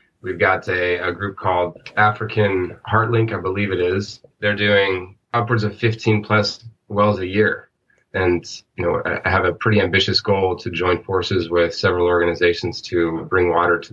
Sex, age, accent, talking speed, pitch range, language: male, 30-49, American, 170 wpm, 85-105 Hz, English